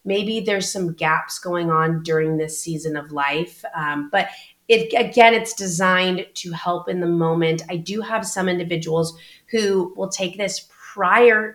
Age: 30-49